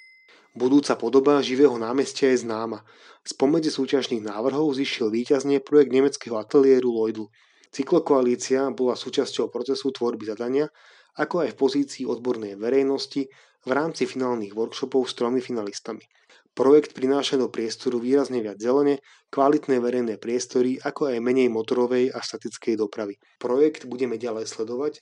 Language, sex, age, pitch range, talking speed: Slovak, male, 30-49, 120-140 Hz, 130 wpm